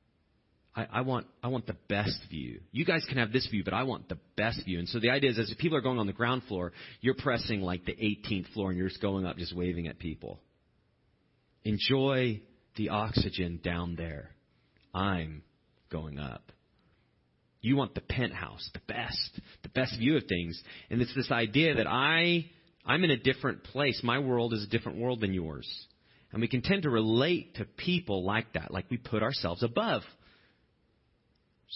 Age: 30-49